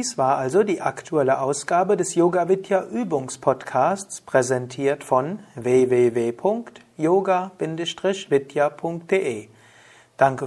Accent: German